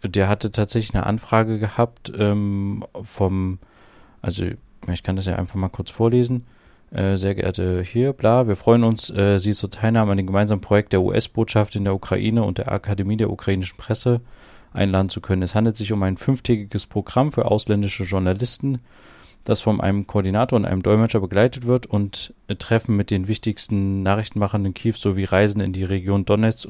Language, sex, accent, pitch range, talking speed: German, male, German, 95-115 Hz, 180 wpm